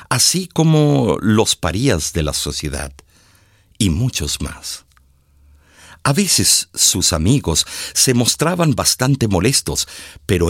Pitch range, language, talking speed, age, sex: 80-120 Hz, Spanish, 110 wpm, 50-69, male